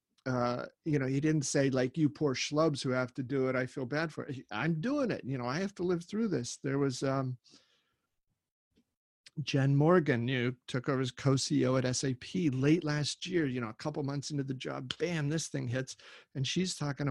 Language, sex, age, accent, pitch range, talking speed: English, male, 50-69, American, 130-160 Hz, 215 wpm